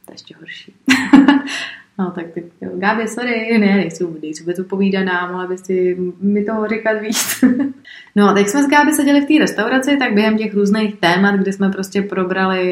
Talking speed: 170 wpm